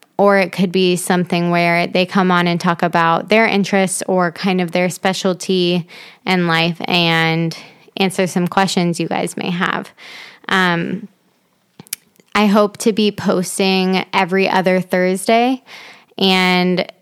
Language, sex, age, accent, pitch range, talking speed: English, female, 20-39, American, 180-205 Hz, 140 wpm